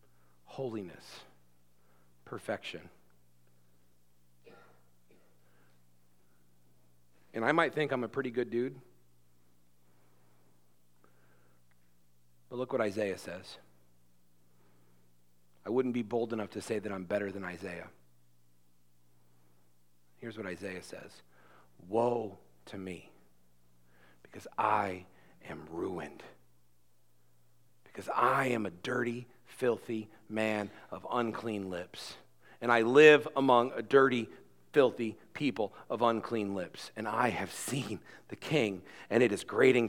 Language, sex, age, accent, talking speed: English, male, 40-59, American, 105 wpm